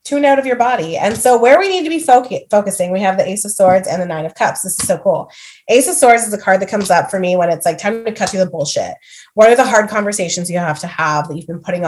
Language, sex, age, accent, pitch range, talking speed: English, female, 20-39, American, 175-255 Hz, 315 wpm